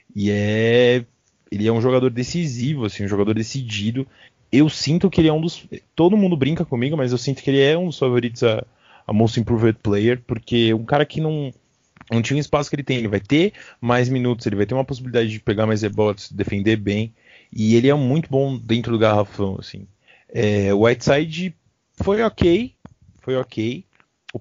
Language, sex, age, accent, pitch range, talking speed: Portuguese, male, 20-39, Brazilian, 110-150 Hz, 200 wpm